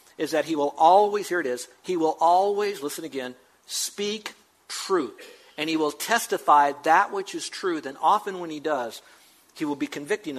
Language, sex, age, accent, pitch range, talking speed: English, male, 50-69, American, 145-180 Hz, 185 wpm